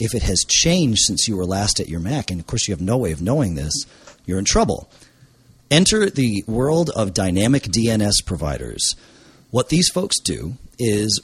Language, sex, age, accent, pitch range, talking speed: English, male, 40-59, American, 95-130 Hz, 190 wpm